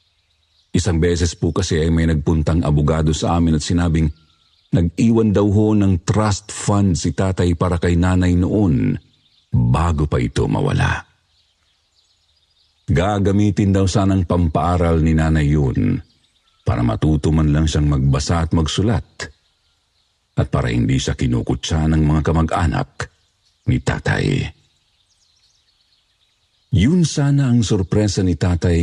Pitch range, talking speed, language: 80-100 Hz, 120 wpm, Filipino